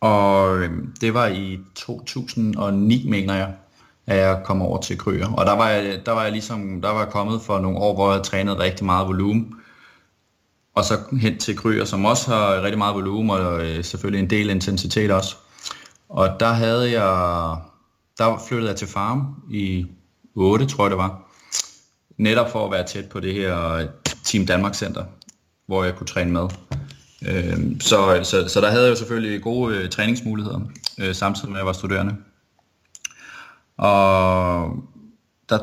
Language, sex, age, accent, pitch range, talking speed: Danish, male, 20-39, native, 95-110 Hz, 170 wpm